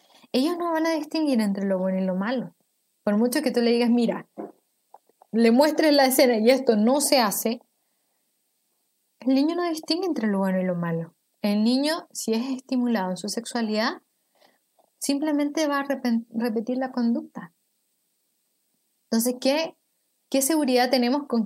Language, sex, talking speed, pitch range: Spanish, female, 155 wpm, 205-270 Hz